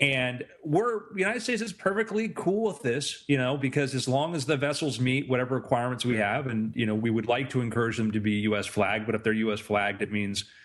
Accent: American